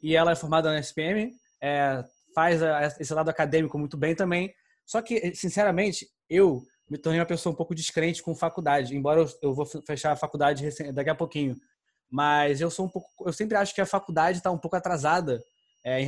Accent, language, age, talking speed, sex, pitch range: Brazilian, Portuguese, 20-39, 200 wpm, male, 155-190 Hz